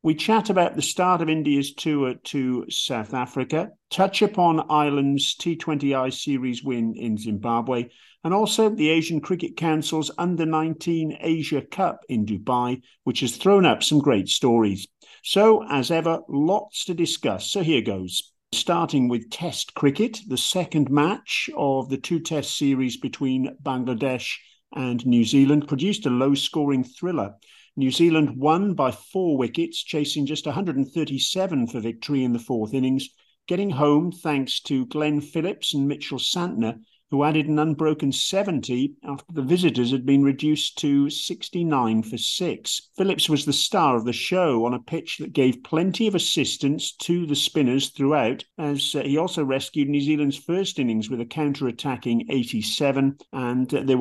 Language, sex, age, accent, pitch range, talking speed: English, male, 50-69, British, 130-165 Hz, 155 wpm